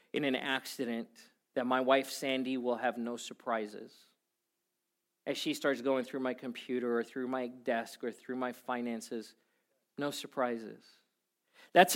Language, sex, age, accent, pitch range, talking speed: English, male, 40-59, American, 155-215 Hz, 145 wpm